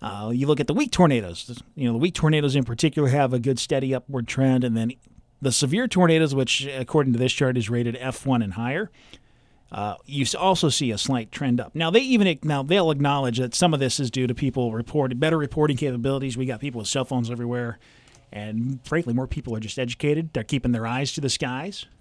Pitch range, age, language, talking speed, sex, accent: 125-160 Hz, 40-59, English, 225 wpm, male, American